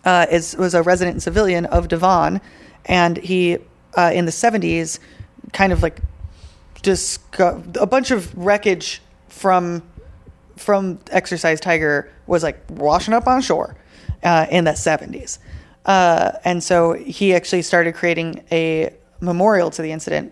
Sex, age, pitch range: female, 20-39, 160-180 Hz